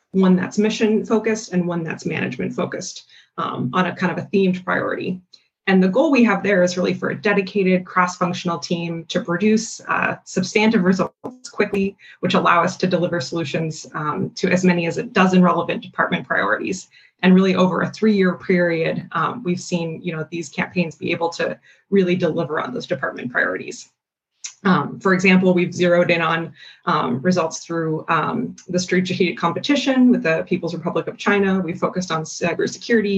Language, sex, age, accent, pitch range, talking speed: English, female, 20-39, American, 175-195 Hz, 175 wpm